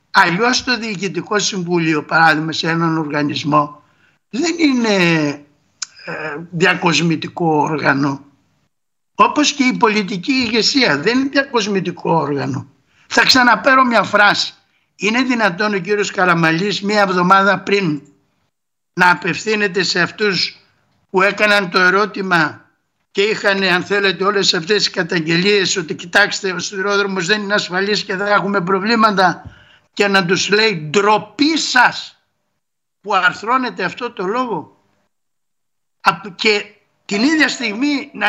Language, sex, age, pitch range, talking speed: Greek, male, 60-79, 165-210 Hz, 120 wpm